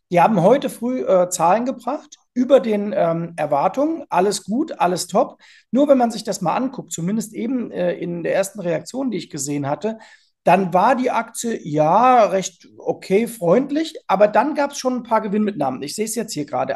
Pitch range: 175-235 Hz